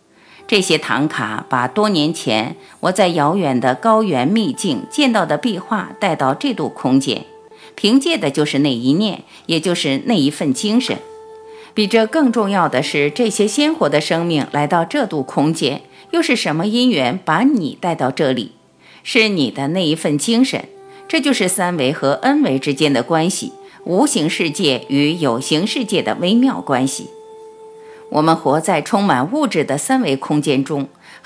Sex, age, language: female, 50-69, Chinese